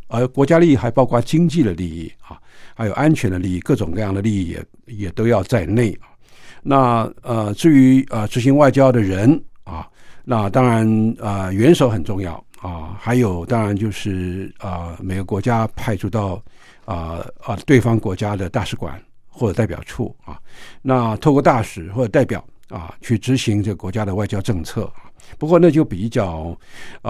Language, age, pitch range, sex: Chinese, 60-79, 95-125 Hz, male